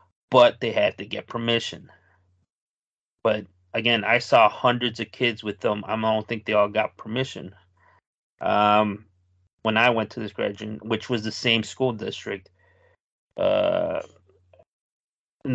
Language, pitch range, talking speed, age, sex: English, 110-125 Hz, 145 wpm, 30-49, male